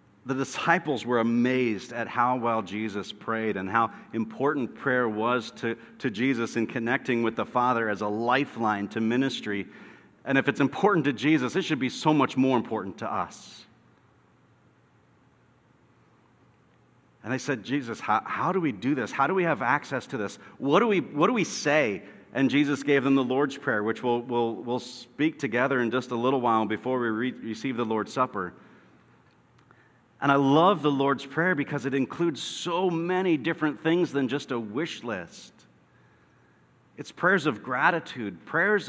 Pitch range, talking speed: 115-145 Hz, 175 wpm